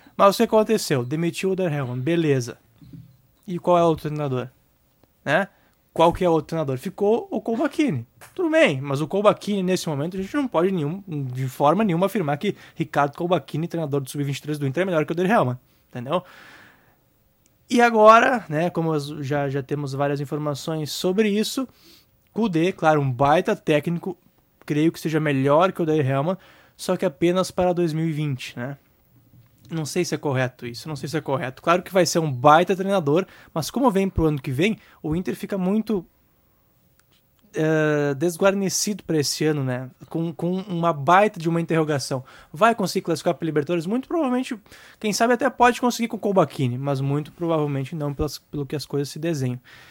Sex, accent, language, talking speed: male, Brazilian, Portuguese, 185 wpm